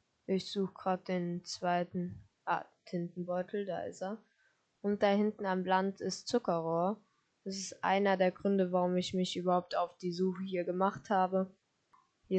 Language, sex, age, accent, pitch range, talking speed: German, female, 10-29, German, 175-195 Hz, 160 wpm